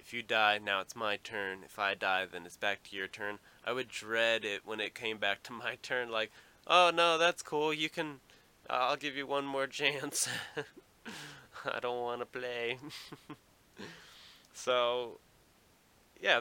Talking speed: 170 wpm